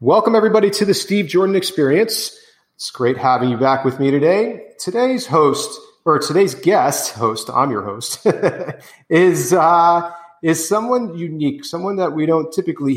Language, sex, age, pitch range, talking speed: English, male, 40-59, 120-155 Hz, 155 wpm